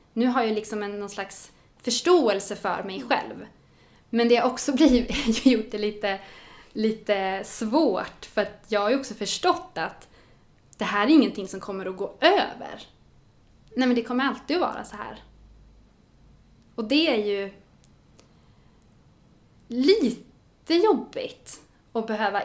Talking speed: 145 wpm